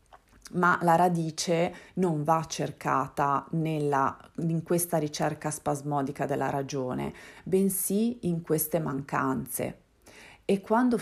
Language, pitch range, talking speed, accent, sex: Italian, 155-185 Hz, 100 wpm, native, female